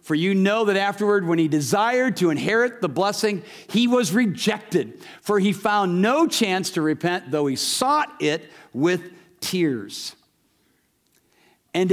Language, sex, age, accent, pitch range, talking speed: English, male, 50-69, American, 150-230 Hz, 145 wpm